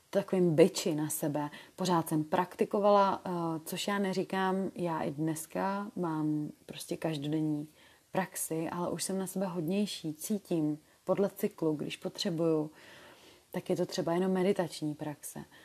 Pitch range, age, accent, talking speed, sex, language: 165-195 Hz, 30-49, native, 135 wpm, female, Czech